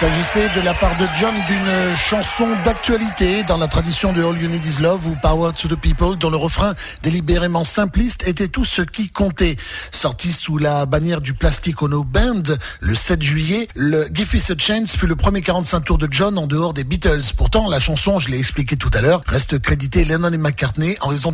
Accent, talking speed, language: French, 215 wpm, French